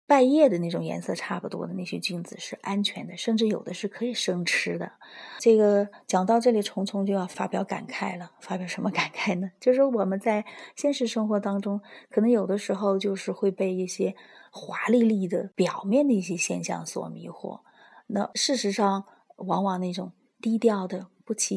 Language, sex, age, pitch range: Chinese, female, 30-49, 190-230 Hz